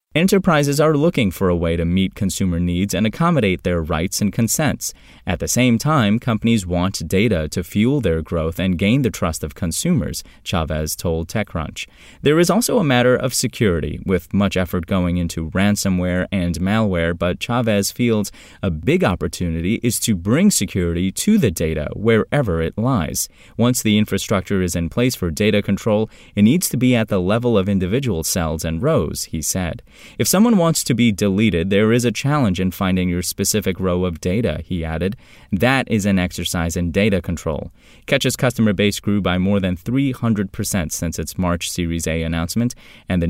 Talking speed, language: 185 wpm, English